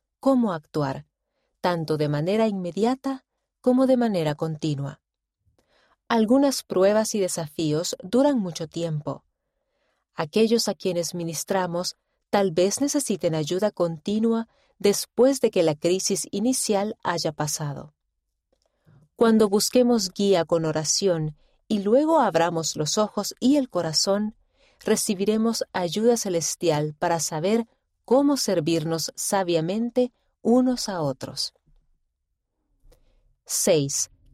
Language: Spanish